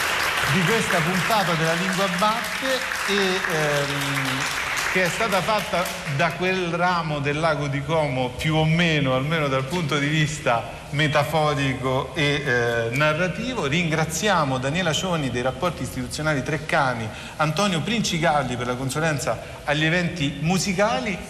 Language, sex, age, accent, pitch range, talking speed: Italian, male, 40-59, native, 145-190 Hz, 125 wpm